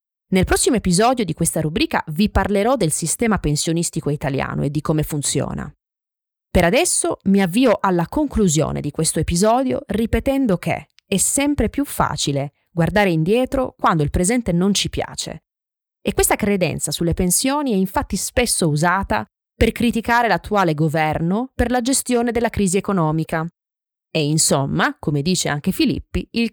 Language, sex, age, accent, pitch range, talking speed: Italian, female, 20-39, native, 155-230 Hz, 145 wpm